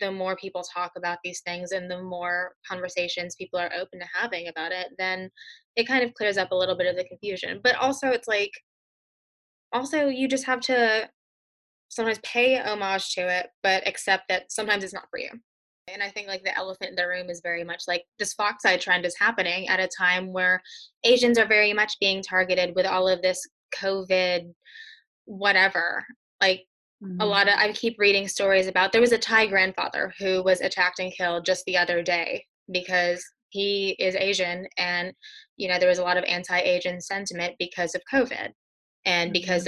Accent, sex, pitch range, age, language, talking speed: American, female, 180-220 Hz, 10-29, English, 195 wpm